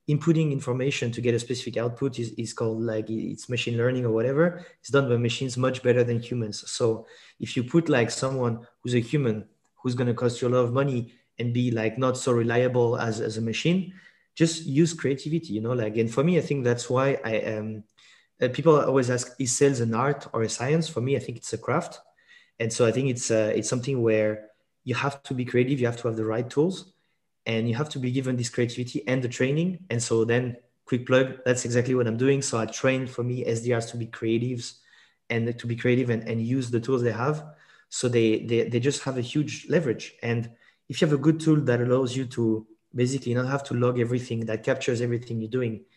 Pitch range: 115-135 Hz